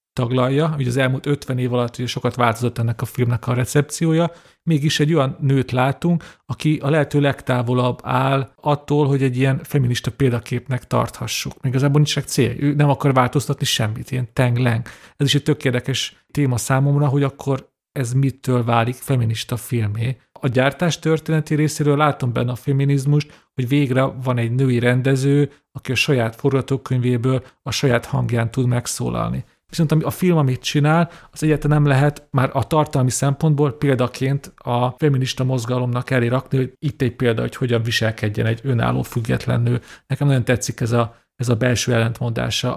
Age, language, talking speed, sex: 40-59, Hungarian, 165 wpm, male